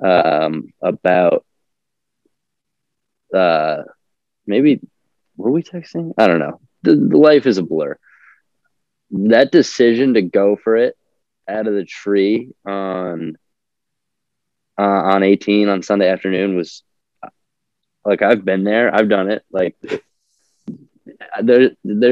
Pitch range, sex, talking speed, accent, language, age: 95-110 Hz, male, 115 wpm, American, English, 20-39